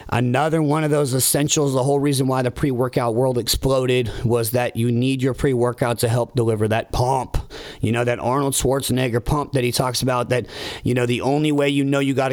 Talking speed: 215 wpm